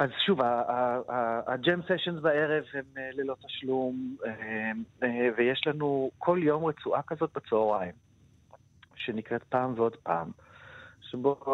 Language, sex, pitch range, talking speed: Hebrew, male, 115-145 Hz, 115 wpm